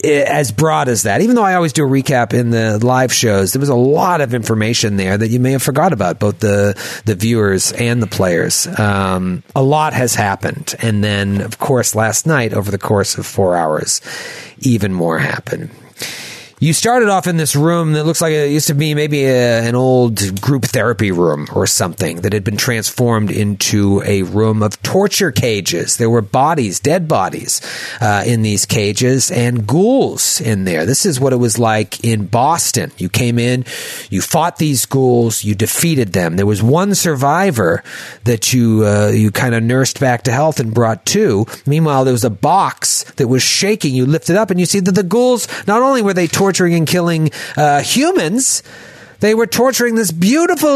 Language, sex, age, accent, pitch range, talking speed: English, male, 30-49, American, 110-160 Hz, 200 wpm